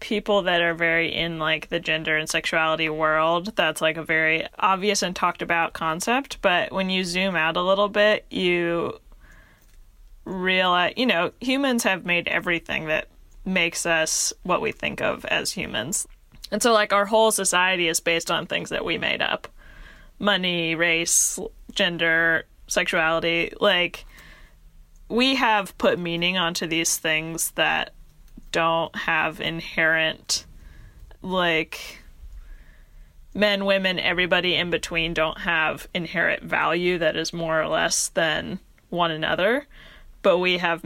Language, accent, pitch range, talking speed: English, American, 160-195 Hz, 140 wpm